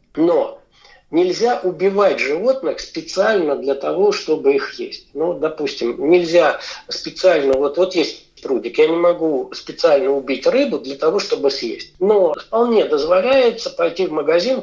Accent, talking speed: native, 140 wpm